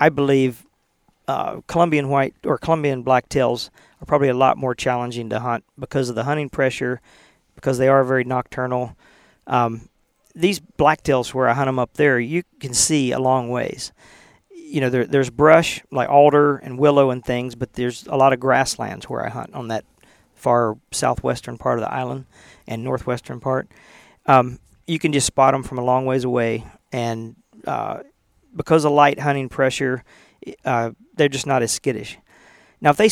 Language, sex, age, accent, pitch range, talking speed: English, male, 40-59, American, 125-145 Hz, 180 wpm